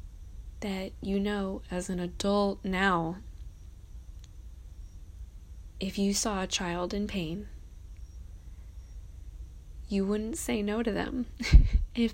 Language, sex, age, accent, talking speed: English, female, 20-39, American, 105 wpm